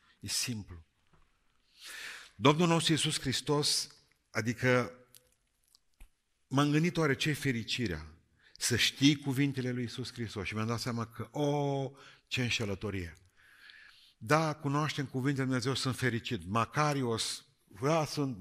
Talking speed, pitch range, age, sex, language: 110 wpm, 95-130 Hz, 50-69, male, Romanian